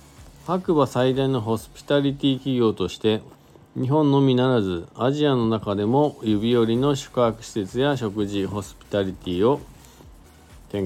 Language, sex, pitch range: Japanese, male, 95-135 Hz